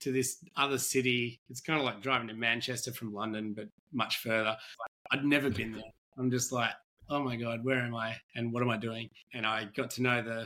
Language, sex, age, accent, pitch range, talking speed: English, male, 20-39, Australian, 115-145 Hz, 230 wpm